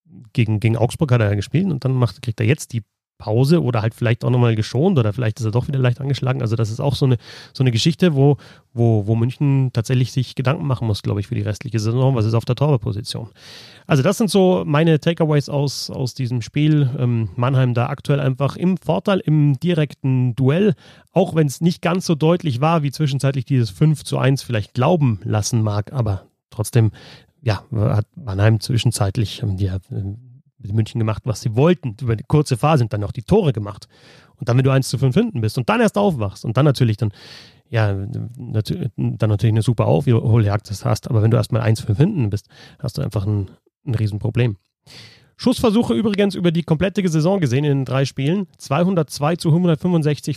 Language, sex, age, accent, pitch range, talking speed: German, male, 30-49, German, 115-150 Hz, 205 wpm